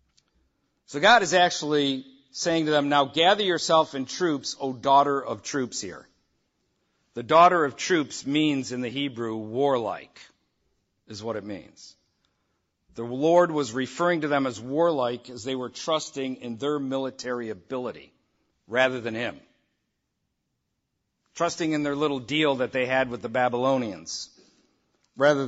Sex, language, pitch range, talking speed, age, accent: male, English, 125-150 Hz, 145 wpm, 50-69, American